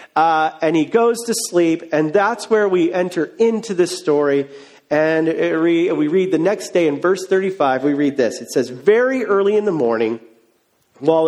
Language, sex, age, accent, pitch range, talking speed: English, male, 40-59, American, 145-215 Hz, 180 wpm